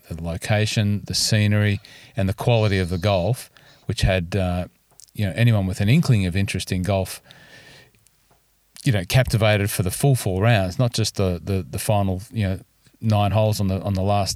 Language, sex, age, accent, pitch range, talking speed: English, male, 40-59, Australian, 95-125 Hz, 190 wpm